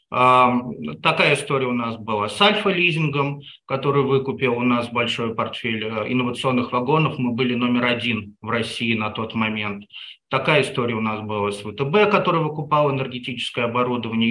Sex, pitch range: male, 115-150 Hz